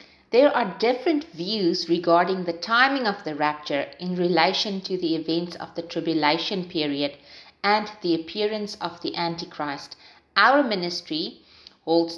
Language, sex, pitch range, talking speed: English, female, 165-220 Hz, 140 wpm